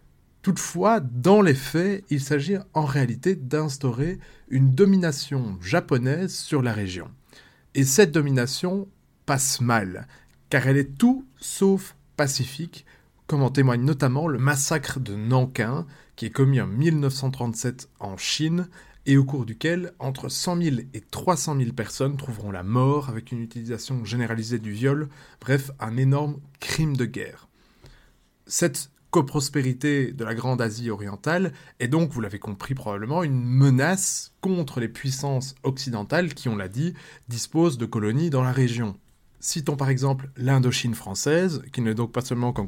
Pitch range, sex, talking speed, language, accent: 120-155 Hz, male, 150 wpm, French, French